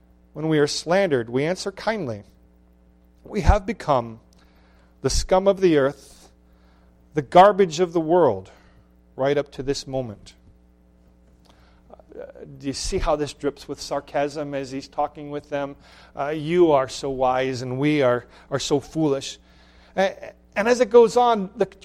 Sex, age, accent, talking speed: male, 40-59, American, 155 wpm